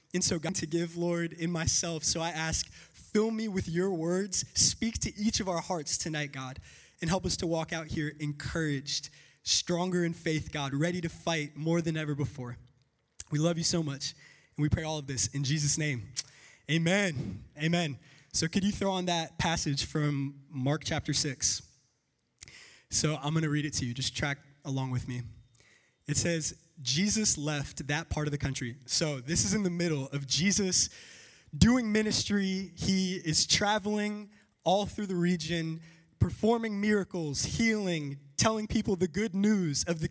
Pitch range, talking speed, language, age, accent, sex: 140-185 Hz, 180 wpm, English, 20-39, American, male